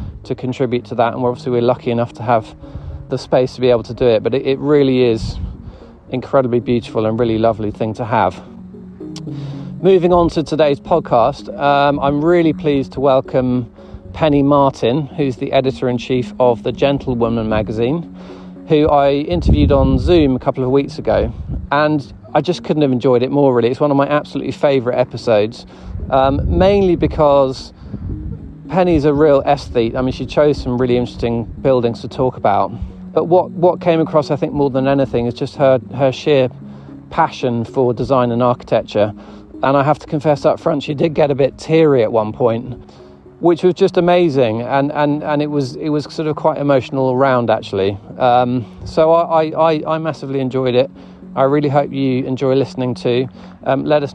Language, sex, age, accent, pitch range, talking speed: English, male, 40-59, British, 120-150 Hz, 185 wpm